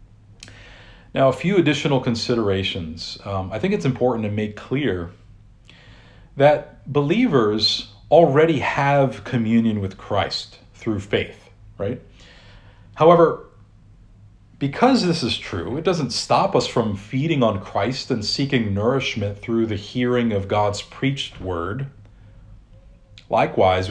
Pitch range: 100-130 Hz